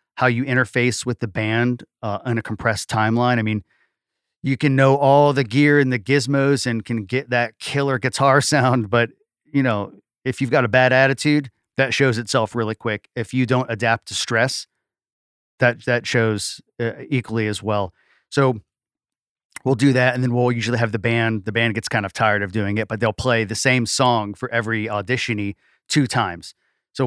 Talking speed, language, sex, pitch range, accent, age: 195 wpm, English, male, 110-130 Hz, American, 40-59